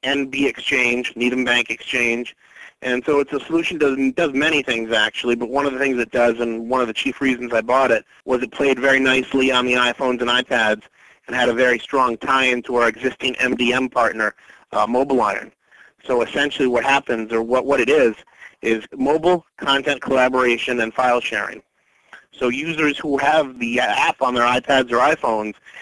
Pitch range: 120-130 Hz